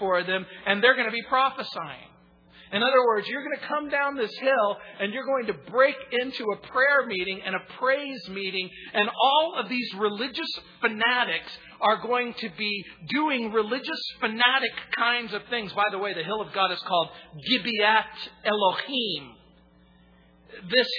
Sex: male